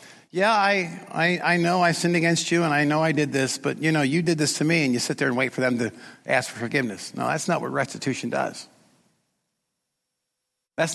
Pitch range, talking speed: 125-155 Hz, 225 wpm